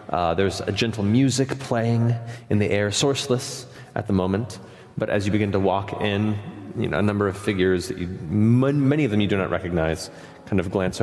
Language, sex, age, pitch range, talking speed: English, male, 30-49, 95-120 Hz, 195 wpm